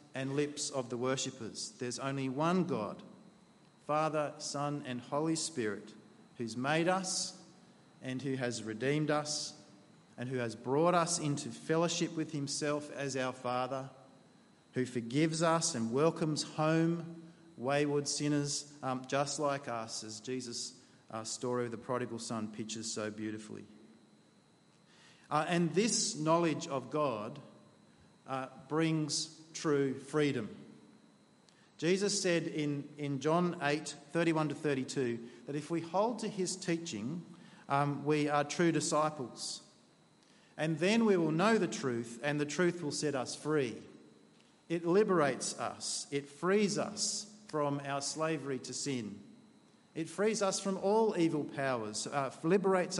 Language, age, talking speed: English, 40-59, 140 wpm